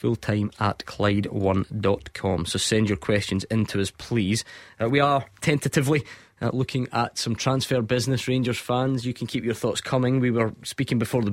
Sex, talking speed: male, 180 wpm